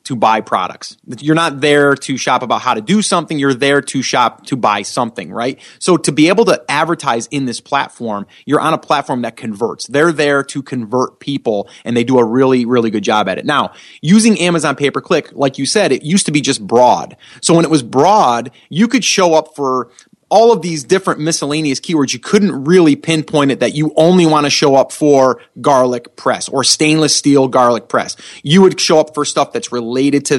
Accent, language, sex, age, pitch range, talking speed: American, English, male, 30-49, 135-170 Hz, 215 wpm